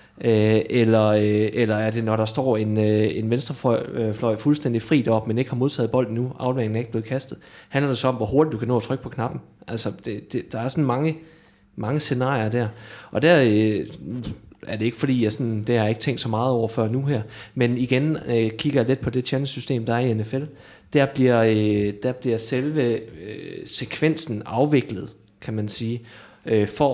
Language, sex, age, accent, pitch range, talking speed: Danish, male, 30-49, native, 110-135 Hz, 200 wpm